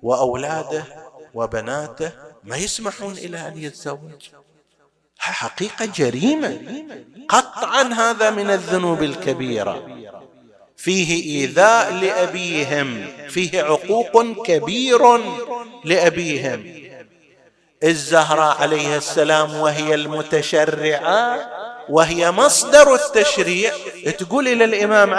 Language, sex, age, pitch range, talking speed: Arabic, male, 50-69, 150-225 Hz, 75 wpm